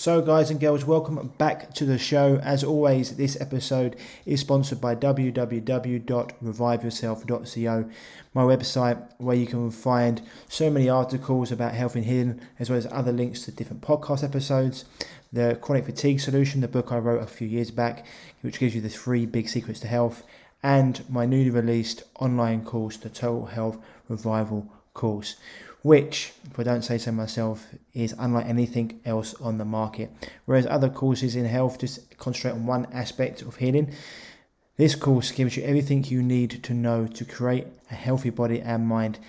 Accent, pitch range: British, 115-130 Hz